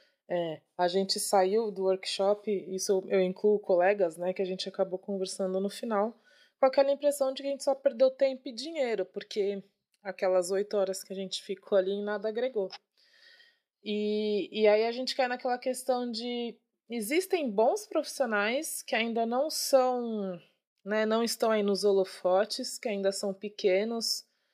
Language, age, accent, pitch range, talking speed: Portuguese, 20-39, Brazilian, 195-255 Hz, 160 wpm